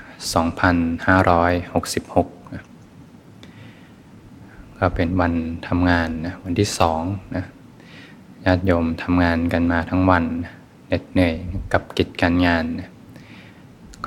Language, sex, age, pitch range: Thai, male, 20-39, 85-95 Hz